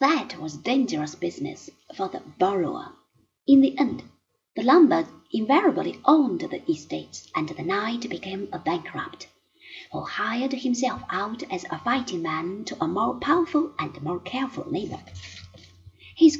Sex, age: female, 30-49